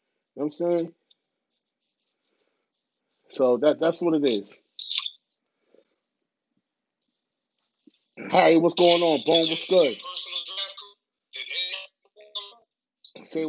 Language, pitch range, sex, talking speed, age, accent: English, 170-245 Hz, male, 85 wpm, 30-49, American